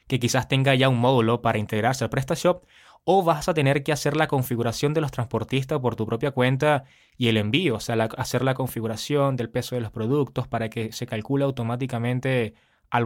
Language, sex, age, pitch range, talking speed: Spanish, male, 20-39, 115-145 Hz, 200 wpm